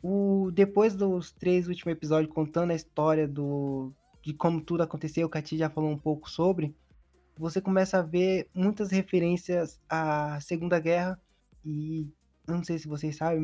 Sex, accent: male, Brazilian